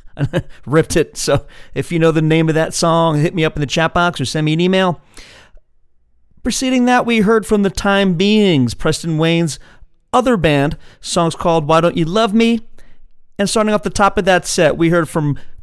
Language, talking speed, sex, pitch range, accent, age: English, 205 wpm, male, 130-175 Hz, American, 40-59